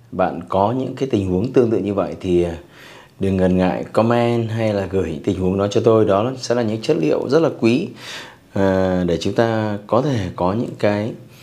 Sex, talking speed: male, 210 wpm